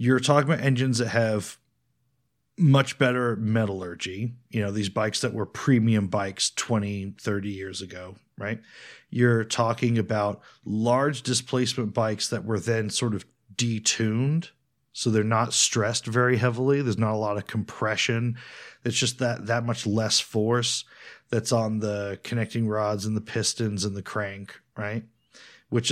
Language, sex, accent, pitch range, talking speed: English, male, American, 105-125 Hz, 155 wpm